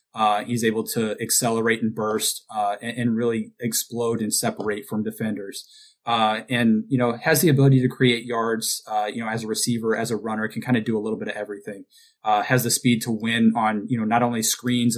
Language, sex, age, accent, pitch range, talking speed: English, male, 20-39, American, 110-125 Hz, 225 wpm